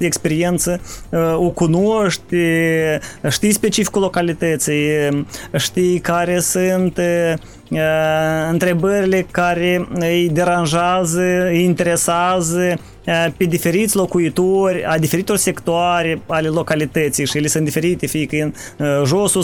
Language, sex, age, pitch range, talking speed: Romanian, male, 20-39, 160-210 Hz, 100 wpm